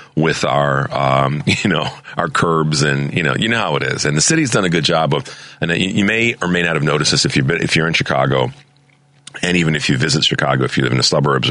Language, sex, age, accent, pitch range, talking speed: English, male, 40-59, American, 70-85 Hz, 260 wpm